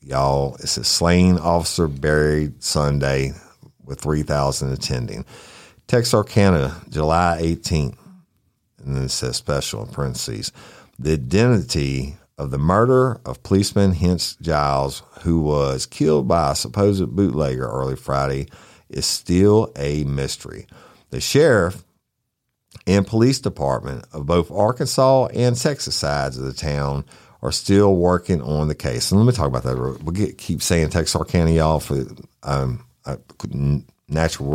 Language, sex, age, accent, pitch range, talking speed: English, male, 50-69, American, 70-95 Hz, 140 wpm